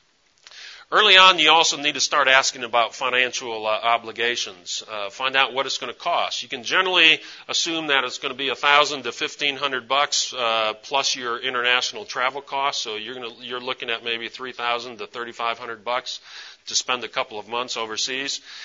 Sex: male